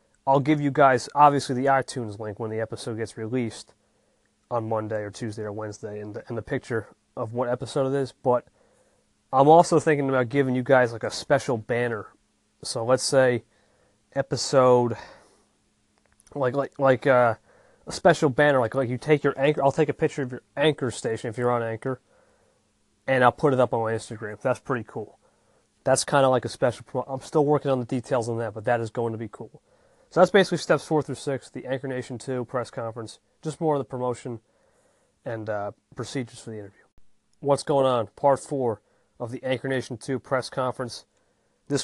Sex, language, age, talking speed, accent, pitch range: male, English, 30-49, 200 wpm, American, 115-140 Hz